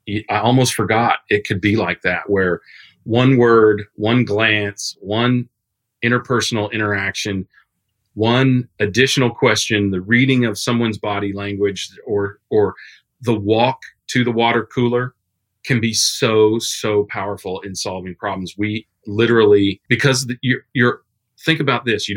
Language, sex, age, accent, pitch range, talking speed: English, male, 40-59, American, 100-125 Hz, 135 wpm